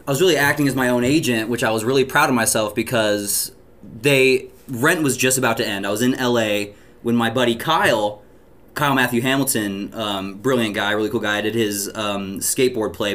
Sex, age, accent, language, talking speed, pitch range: male, 20-39, American, English, 205 wpm, 105-125 Hz